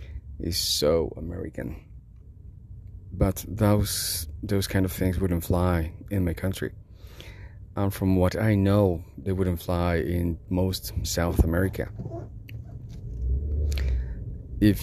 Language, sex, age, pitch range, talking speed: English, male, 30-49, 85-105 Hz, 110 wpm